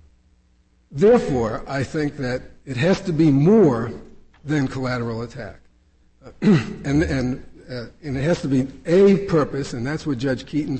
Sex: male